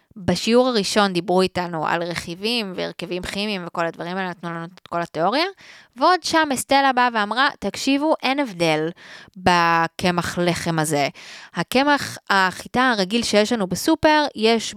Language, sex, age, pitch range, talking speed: Hebrew, female, 20-39, 175-255 Hz, 140 wpm